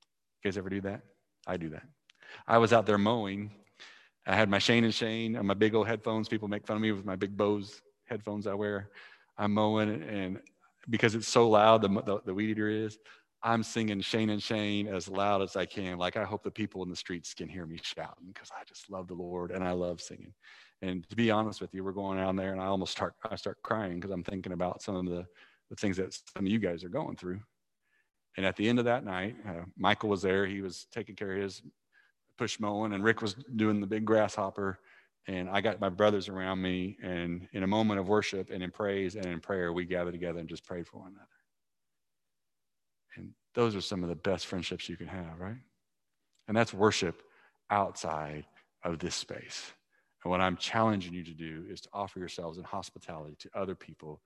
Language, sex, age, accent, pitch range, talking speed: English, male, 30-49, American, 90-105 Hz, 225 wpm